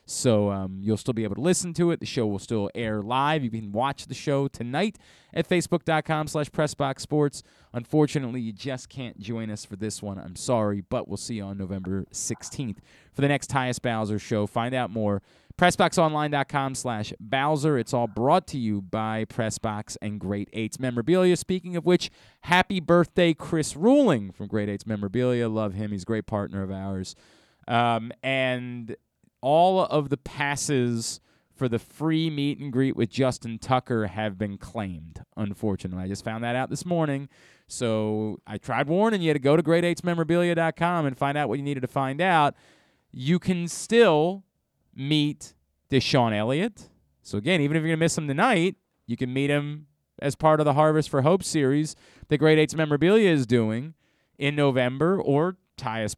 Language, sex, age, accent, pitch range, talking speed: English, male, 30-49, American, 110-155 Hz, 180 wpm